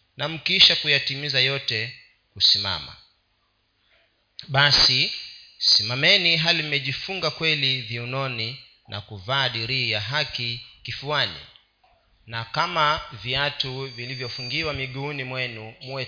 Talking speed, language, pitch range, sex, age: 80 wpm, Swahili, 115-145 Hz, male, 40-59